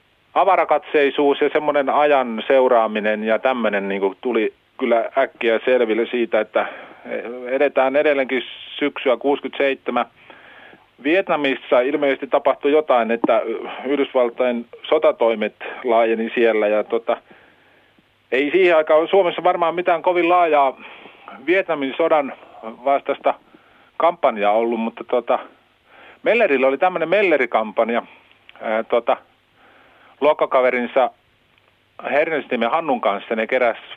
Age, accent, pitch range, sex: 40-59, native, 115-155 Hz, male